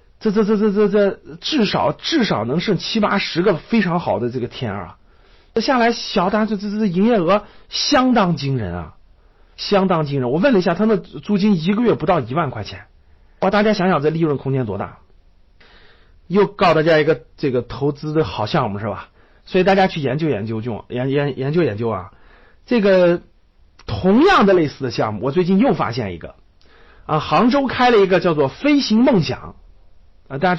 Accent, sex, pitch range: native, male, 125-205 Hz